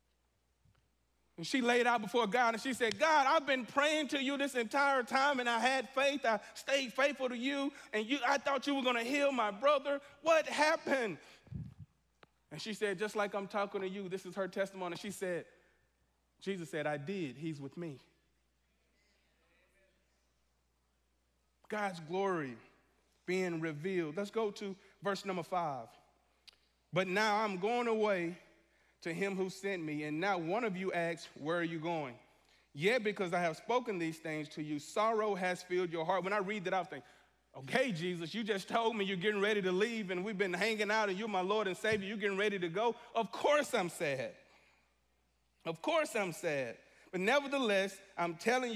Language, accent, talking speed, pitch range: English, American, 185 wpm, 170-230 Hz